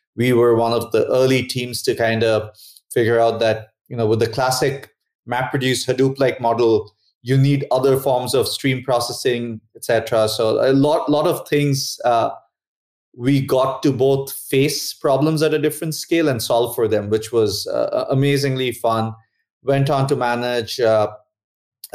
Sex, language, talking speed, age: male, English, 165 wpm, 30-49